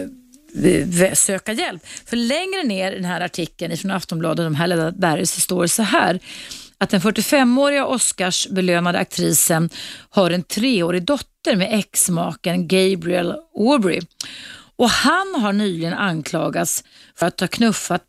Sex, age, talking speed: female, 30-49, 135 wpm